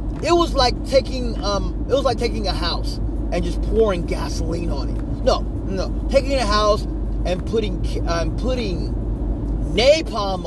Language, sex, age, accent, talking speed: English, male, 30-49, American, 155 wpm